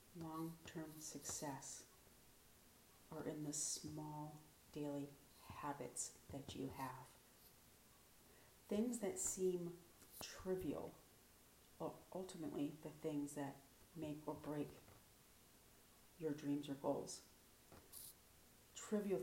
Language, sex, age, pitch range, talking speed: English, female, 40-59, 145-160 Hz, 85 wpm